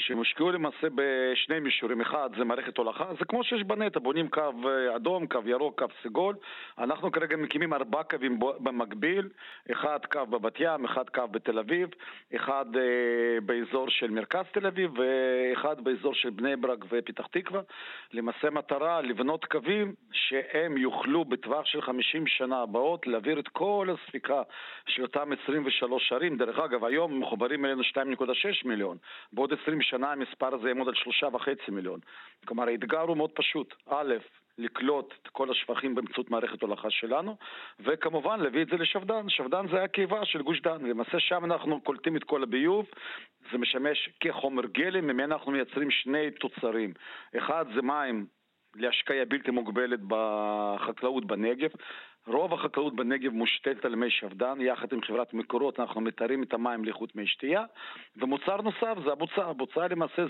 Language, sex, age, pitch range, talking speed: Hebrew, male, 40-59, 120-165 Hz, 155 wpm